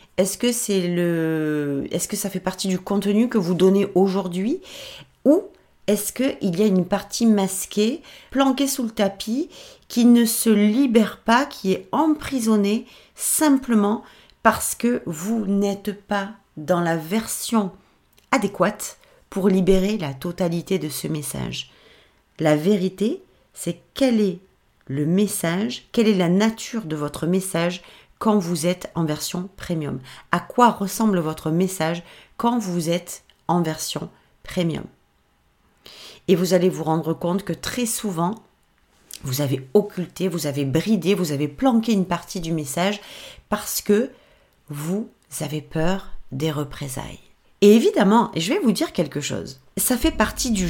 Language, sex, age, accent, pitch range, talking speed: French, female, 40-59, French, 160-215 Hz, 145 wpm